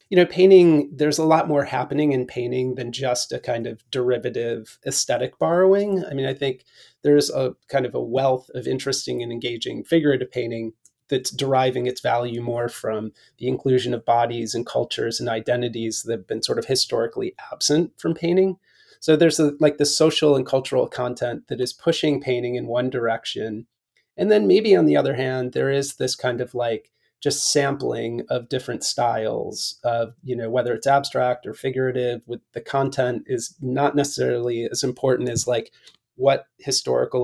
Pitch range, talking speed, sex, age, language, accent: 120-150 Hz, 175 wpm, male, 30-49, English, American